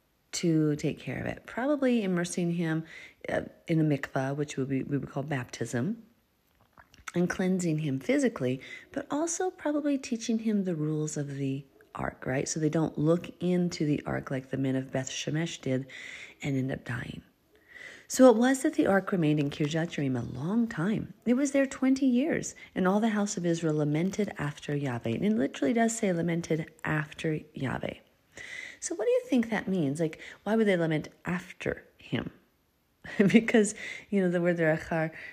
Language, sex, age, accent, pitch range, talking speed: English, female, 30-49, American, 145-210 Hz, 180 wpm